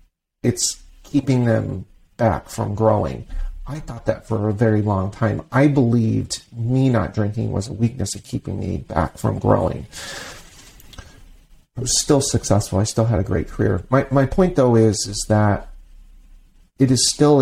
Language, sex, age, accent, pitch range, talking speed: English, male, 40-59, American, 105-120 Hz, 165 wpm